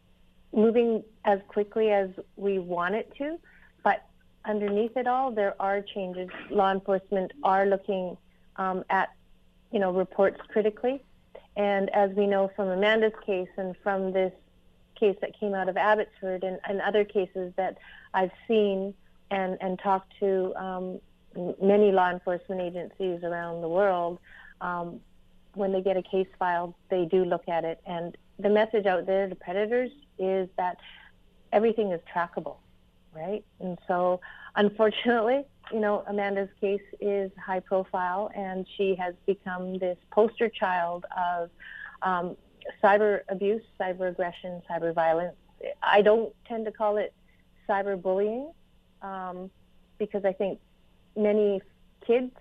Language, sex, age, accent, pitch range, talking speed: English, female, 40-59, American, 185-210 Hz, 140 wpm